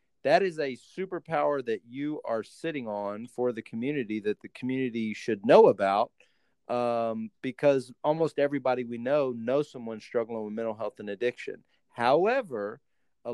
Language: English